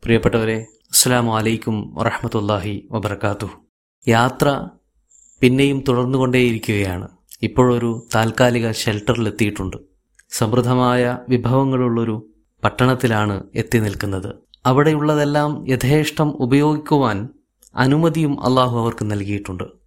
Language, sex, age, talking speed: Malayalam, male, 30-49, 70 wpm